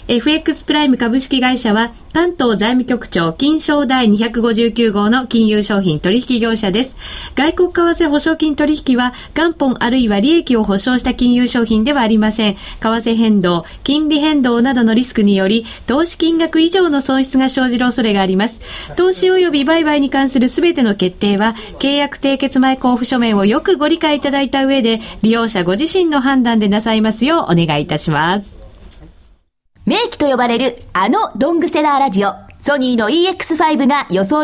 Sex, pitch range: female, 215-300 Hz